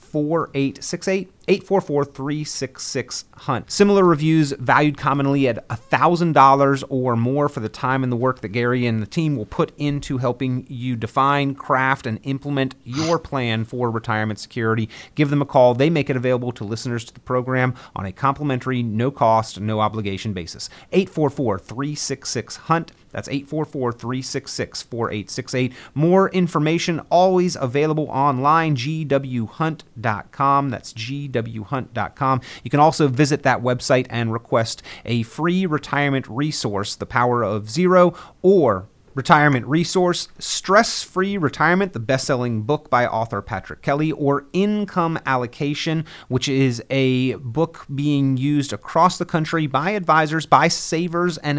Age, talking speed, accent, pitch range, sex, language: 30-49, 140 wpm, American, 120-155 Hz, male, English